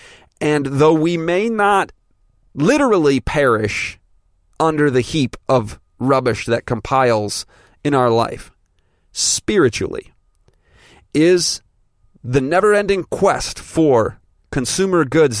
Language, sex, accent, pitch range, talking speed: English, male, American, 115-150 Hz, 95 wpm